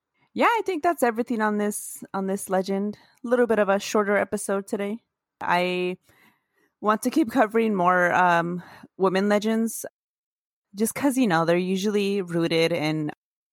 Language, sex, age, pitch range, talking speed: English, female, 20-39, 175-240 Hz, 155 wpm